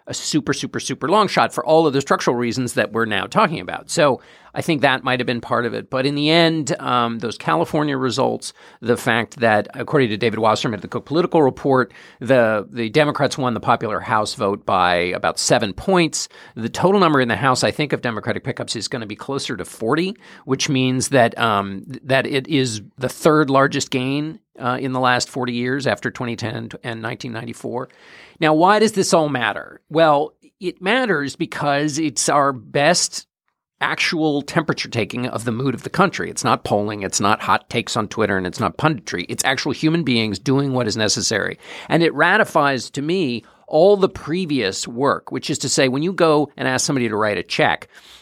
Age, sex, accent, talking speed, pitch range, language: 50-69, male, American, 205 wpm, 115-155 Hz, English